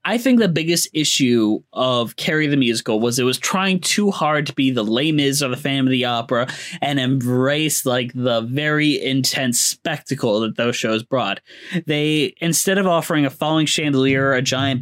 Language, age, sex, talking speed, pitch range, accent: English, 20-39, male, 185 wpm, 125-155 Hz, American